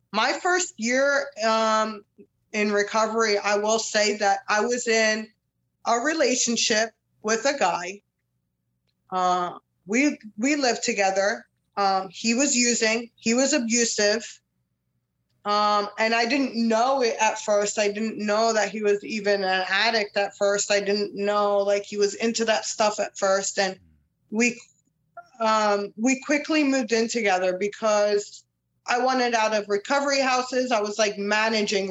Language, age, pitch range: English, 20-39, 195-240 Hz